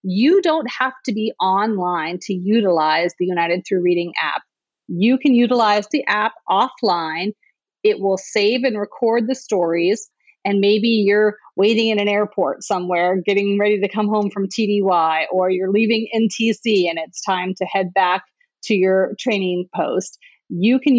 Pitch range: 190-235 Hz